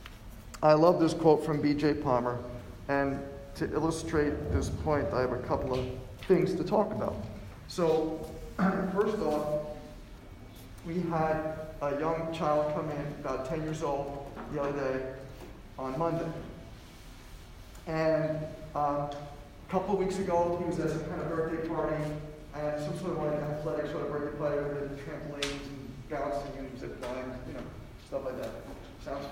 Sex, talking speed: male, 160 wpm